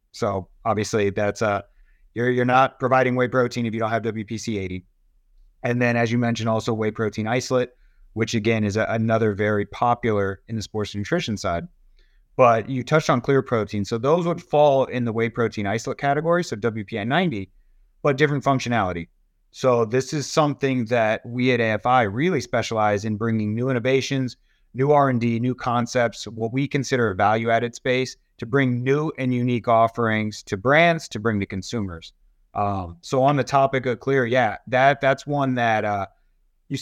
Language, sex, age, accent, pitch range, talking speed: English, male, 30-49, American, 110-130 Hz, 175 wpm